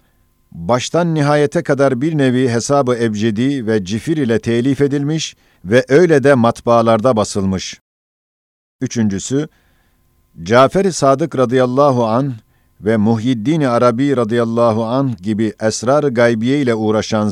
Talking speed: 110 wpm